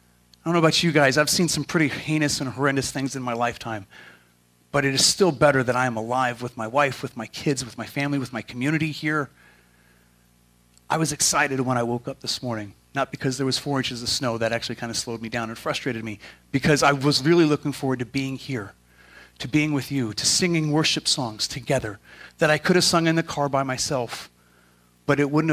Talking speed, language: 230 wpm, English